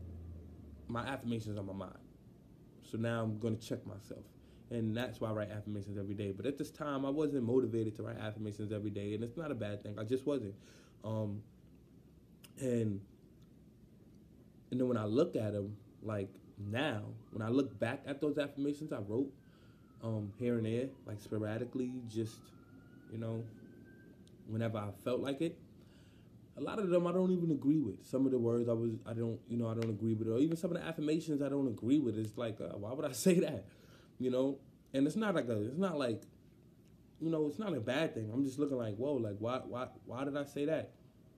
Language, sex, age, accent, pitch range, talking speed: English, male, 20-39, American, 110-140 Hz, 205 wpm